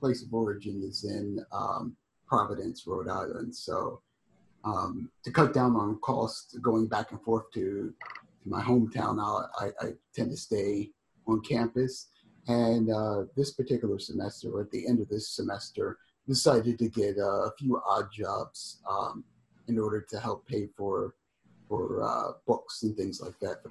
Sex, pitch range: male, 105-120 Hz